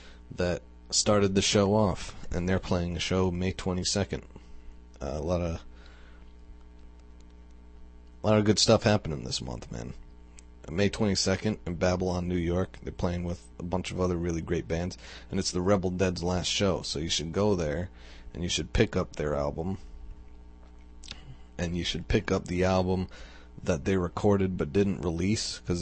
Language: English